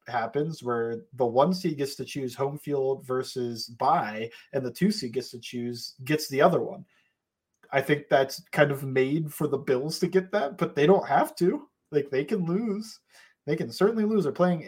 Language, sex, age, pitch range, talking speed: English, male, 20-39, 120-160 Hz, 205 wpm